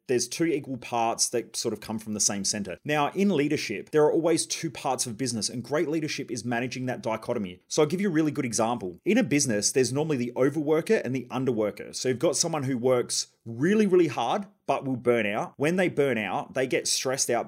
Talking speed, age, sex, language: 235 wpm, 30-49, male, English